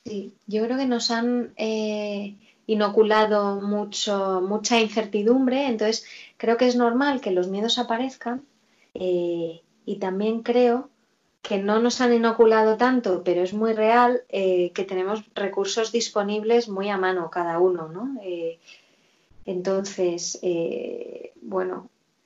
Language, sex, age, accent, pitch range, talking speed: Spanish, female, 20-39, Spanish, 190-235 Hz, 130 wpm